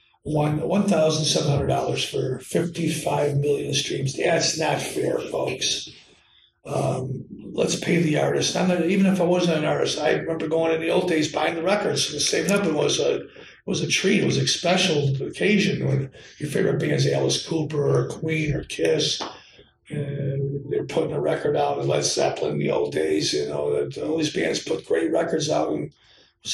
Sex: male